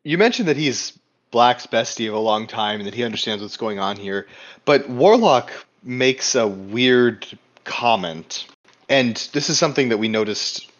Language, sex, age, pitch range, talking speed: English, male, 30-49, 100-130 Hz, 170 wpm